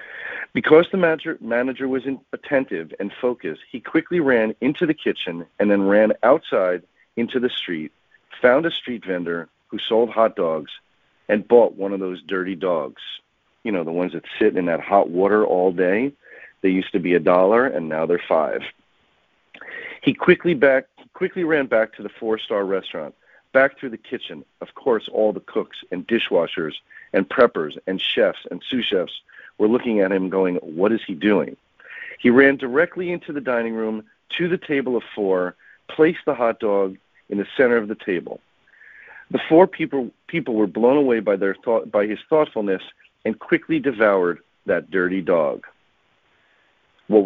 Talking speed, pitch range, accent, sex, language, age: 170 wpm, 95-135 Hz, American, male, English, 40-59